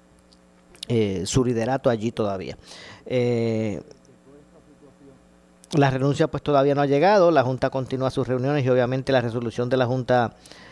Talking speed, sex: 140 wpm, male